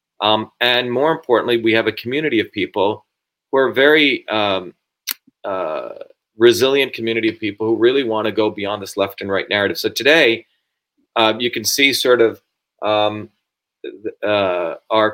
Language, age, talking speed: English, 40-59, 160 wpm